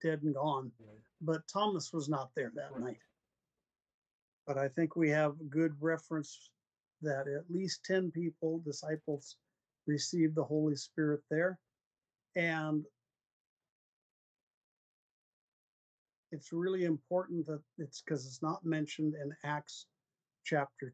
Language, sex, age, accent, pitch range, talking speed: English, male, 50-69, American, 140-165 Hz, 120 wpm